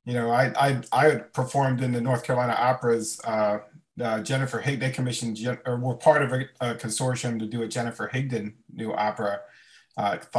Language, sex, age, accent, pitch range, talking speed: English, male, 40-59, American, 120-140 Hz, 195 wpm